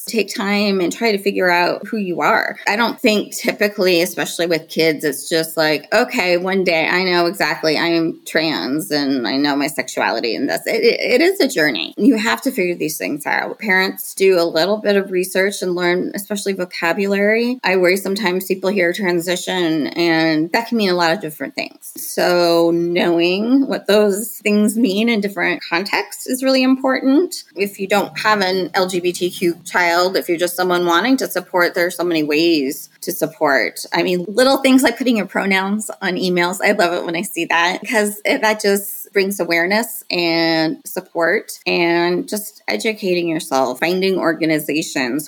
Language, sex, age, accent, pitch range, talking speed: English, female, 20-39, American, 170-215 Hz, 185 wpm